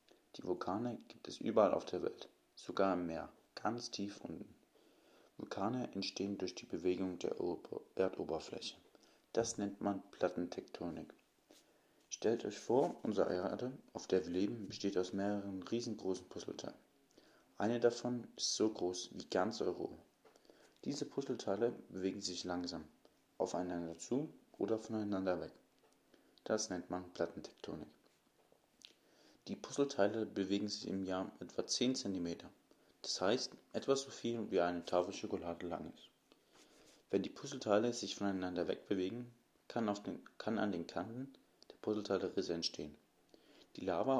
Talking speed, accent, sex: 135 wpm, German, male